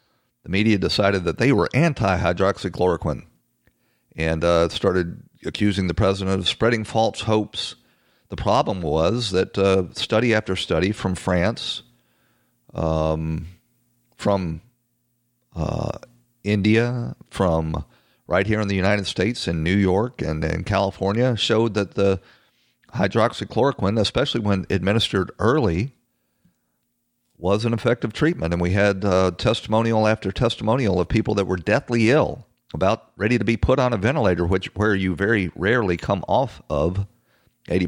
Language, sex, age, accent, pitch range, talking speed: English, male, 40-59, American, 90-110 Hz, 135 wpm